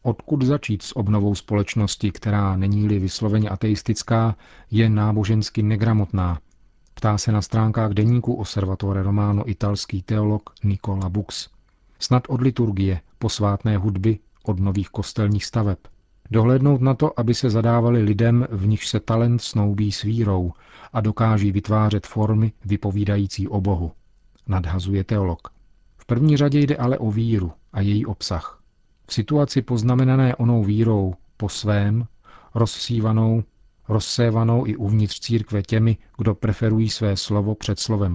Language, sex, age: Czech, male, 40-59